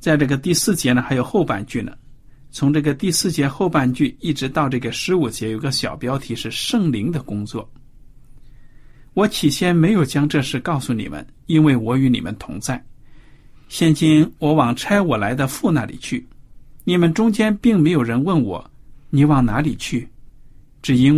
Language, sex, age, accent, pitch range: Chinese, male, 50-69, native, 125-160 Hz